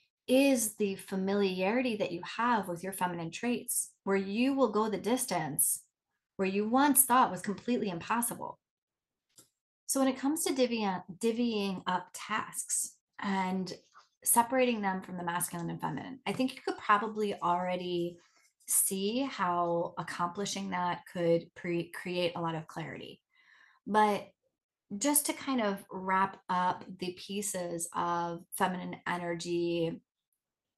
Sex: female